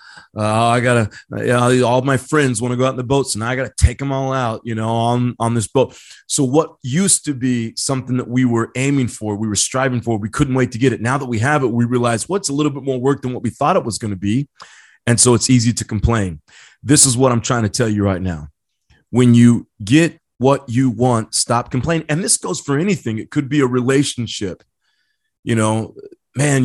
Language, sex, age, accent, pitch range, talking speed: English, male, 30-49, American, 115-135 Hz, 245 wpm